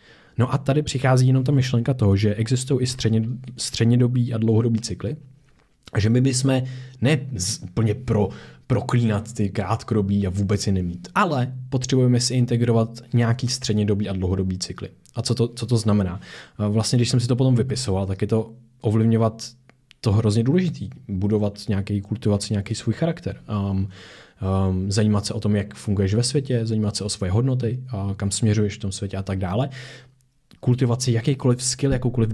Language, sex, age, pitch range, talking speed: Czech, male, 20-39, 105-130 Hz, 170 wpm